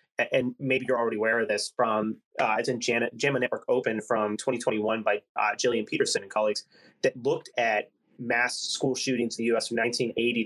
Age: 30-49